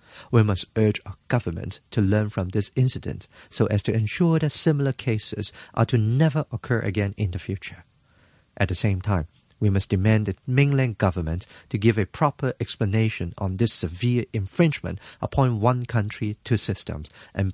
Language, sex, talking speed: English, male, 170 wpm